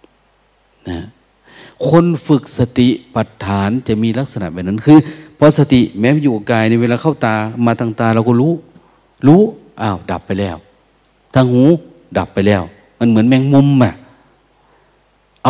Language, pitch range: Thai, 105-135 Hz